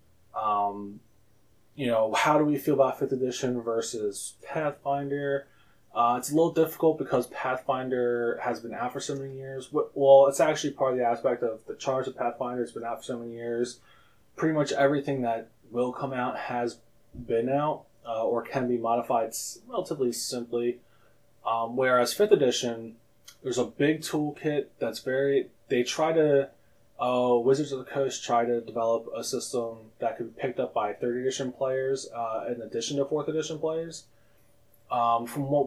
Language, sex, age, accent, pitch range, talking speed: English, male, 20-39, American, 115-140 Hz, 175 wpm